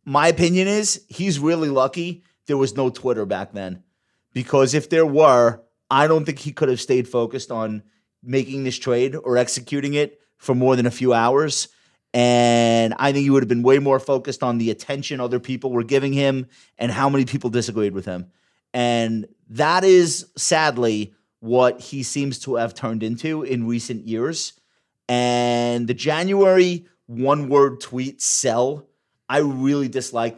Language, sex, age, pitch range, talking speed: English, male, 30-49, 120-155 Hz, 170 wpm